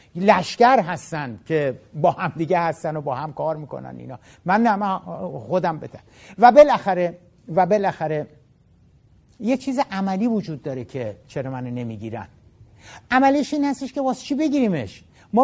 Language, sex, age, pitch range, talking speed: Persian, male, 60-79, 160-225 Hz, 150 wpm